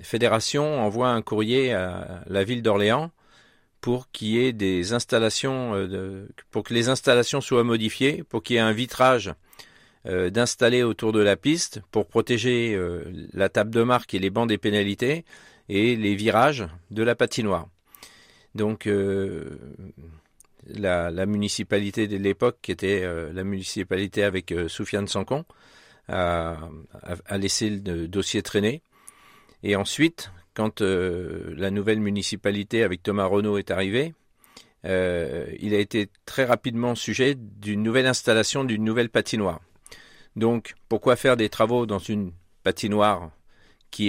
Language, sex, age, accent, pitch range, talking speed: French, male, 50-69, French, 95-115 Hz, 135 wpm